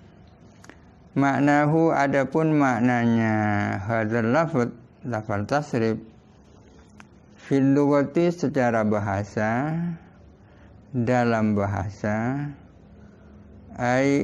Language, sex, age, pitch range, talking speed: Indonesian, male, 60-79, 105-130 Hz, 45 wpm